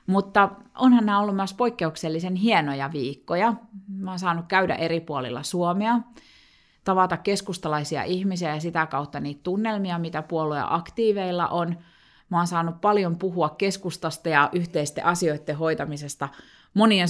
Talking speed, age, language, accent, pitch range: 135 wpm, 30-49, Finnish, native, 150-195 Hz